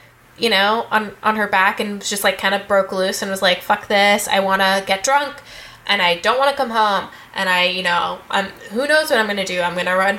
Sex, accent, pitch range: female, American, 195-240 Hz